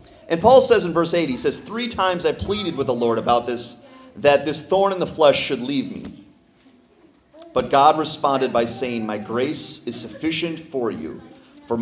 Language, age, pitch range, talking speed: English, 30-49, 115-165 Hz, 195 wpm